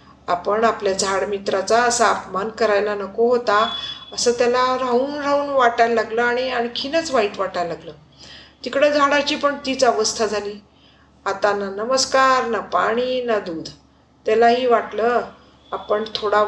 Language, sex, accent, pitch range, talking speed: Marathi, female, native, 205-255 Hz, 135 wpm